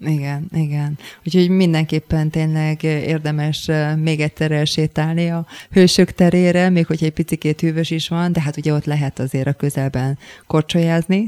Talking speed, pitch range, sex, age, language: 150 wpm, 155-175 Hz, female, 20-39, Hungarian